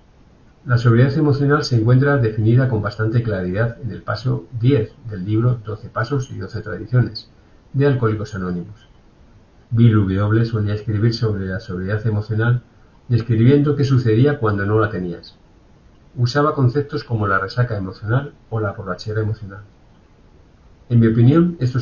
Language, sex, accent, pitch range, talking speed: English, male, Spanish, 105-125 Hz, 145 wpm